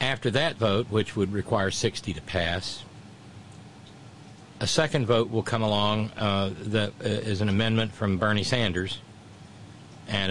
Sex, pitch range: male, 100-125 Hz